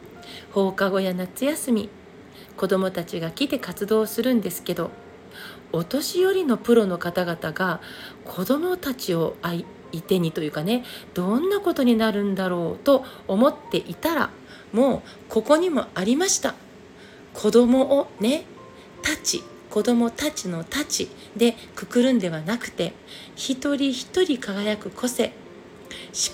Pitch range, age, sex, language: 195-250 Hz, 40-59, female, Japanese